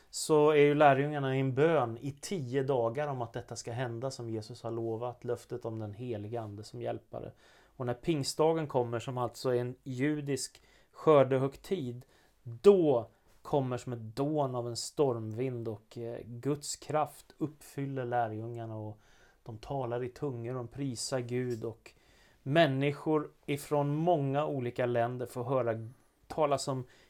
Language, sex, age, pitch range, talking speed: Swedish, male, 30-49, 120-140 Hz, 150 wpm